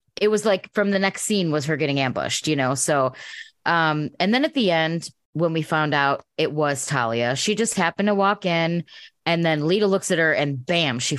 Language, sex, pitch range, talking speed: English, female, 145-195 Hz, 225 wpm